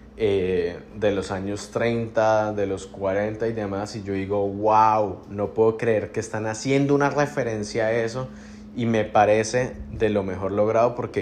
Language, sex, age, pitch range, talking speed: Spanish, male, 20-39, 100-125 Hz, 170 wpm